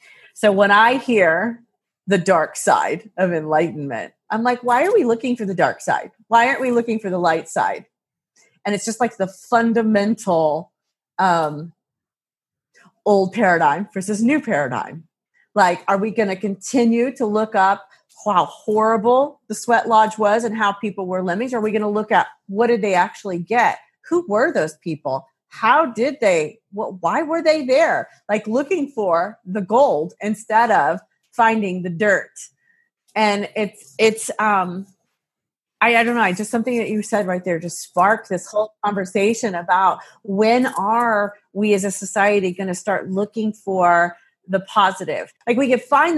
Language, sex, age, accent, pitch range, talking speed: English, female, 40-59, American, 190-235 Hz, 165 wpm